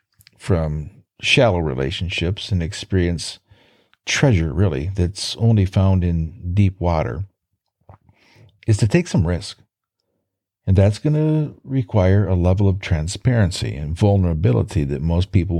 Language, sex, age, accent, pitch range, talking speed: English, male, 50-69, American, 95-120 Hz, 125 wpm